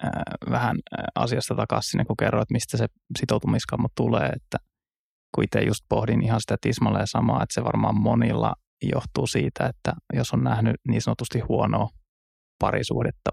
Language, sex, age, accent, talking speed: Finnish, male, 20-39, native, 150 wpm